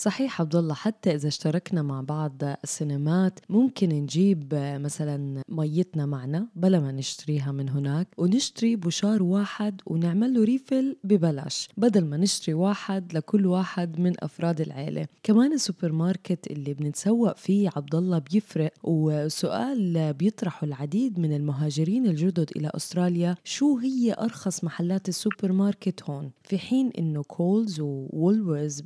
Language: Arabic